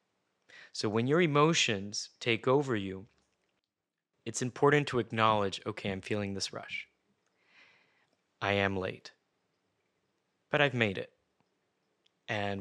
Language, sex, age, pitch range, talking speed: English, male, 30-49, 105-130 Hz, 115 wpm